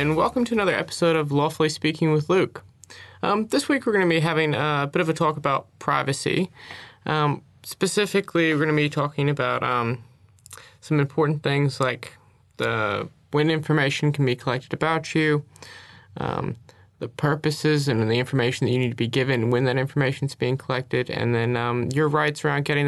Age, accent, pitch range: 20-39, American, 130-165 Hz